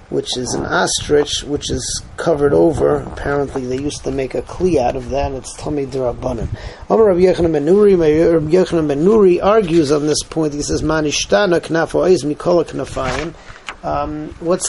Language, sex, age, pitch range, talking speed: English, male, 40-59, 135-170 Hz, 125 wpm